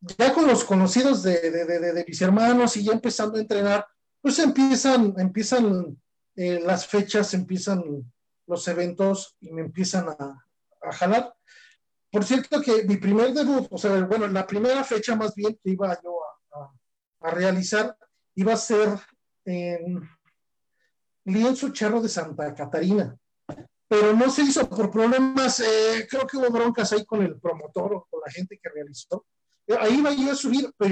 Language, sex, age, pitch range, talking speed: Spanish, male, 40-59, 175-235 Hz, 170 wpm